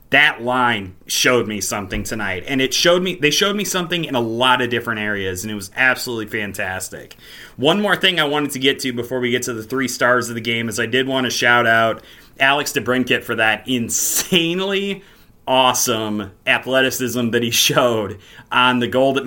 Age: 30-49